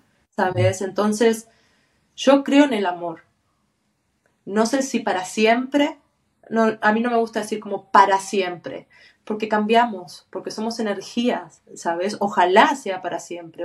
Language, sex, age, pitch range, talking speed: Spanish, female, 20-39, 180-225 Hz, 135 wpm